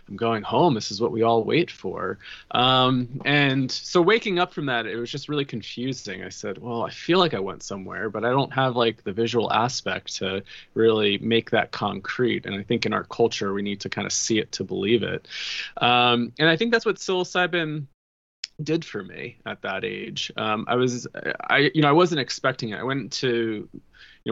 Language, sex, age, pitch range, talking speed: English, male, 20-39, 105-130 Hz, 215 wpm